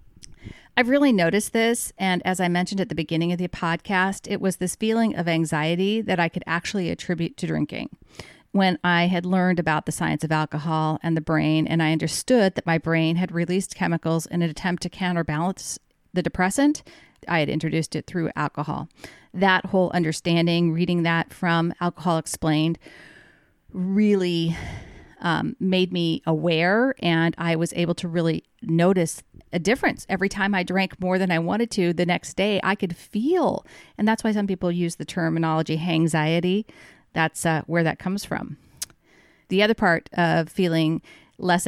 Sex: female